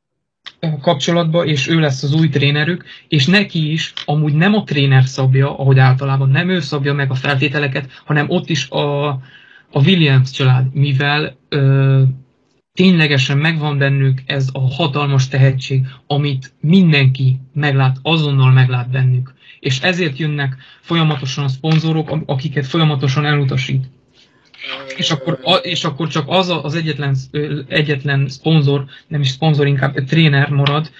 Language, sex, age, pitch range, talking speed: Hungarian, male, 20-39, 135-155 Hz, 135 wpm